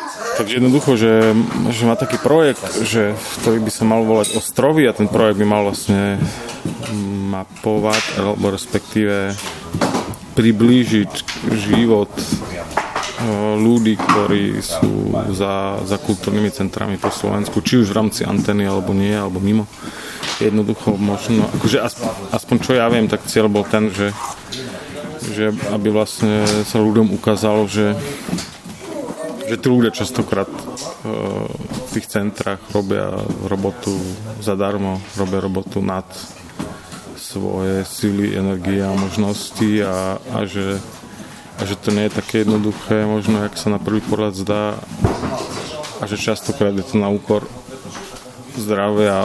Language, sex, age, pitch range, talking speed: Slovak, male, 30-49, 100-110 Hz, 130 wpm